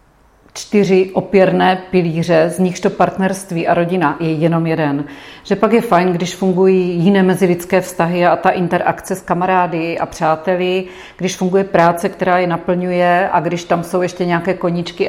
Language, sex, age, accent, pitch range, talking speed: Czech, female, 40-59, native, 170-195 Hz, 165 wpm